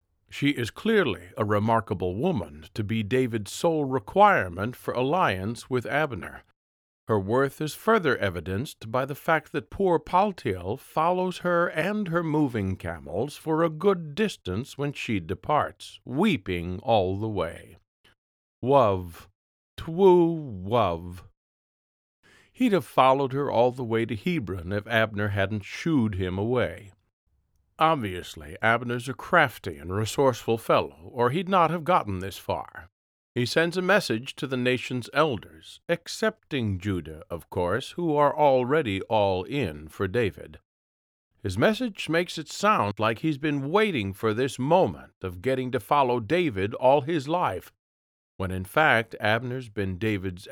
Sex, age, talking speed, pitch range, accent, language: male, 50-69, 145 wpm, 95-150 Hz, American, English